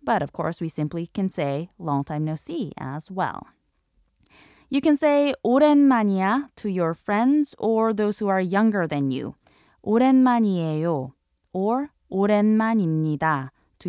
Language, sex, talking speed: English, female, 135 wpm